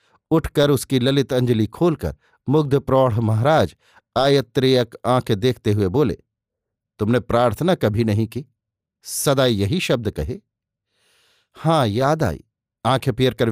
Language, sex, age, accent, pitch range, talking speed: Hindi, male, 50-69, native, 115-145 Hz, 120 wpm